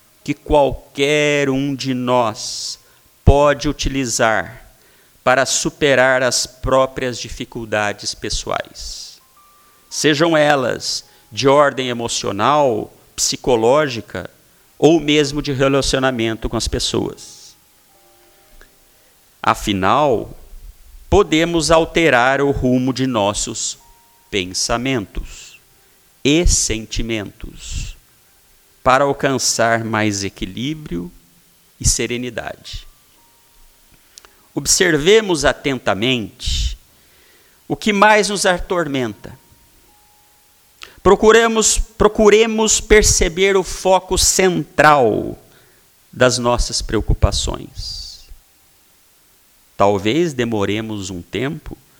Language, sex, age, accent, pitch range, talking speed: Portuguese, male, 50-69, Brazilian, 105-150 Hz, 70 wpm